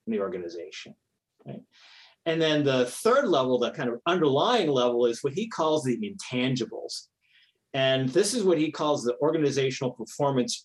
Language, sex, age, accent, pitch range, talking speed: English, male, 50-69, American, 115-150 Hz, 165 wpm